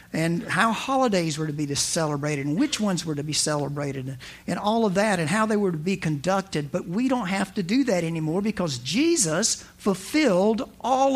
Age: 50-69